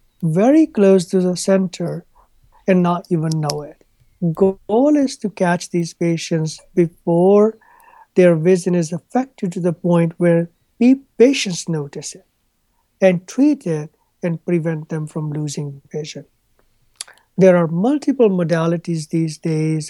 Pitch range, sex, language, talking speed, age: 160-195 Hz, male, English, 130 wpm, 60-79